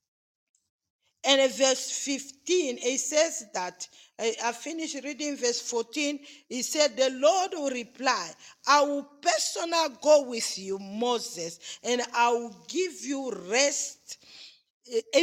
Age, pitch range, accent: 50-69, 240-310 Hz, Nigerian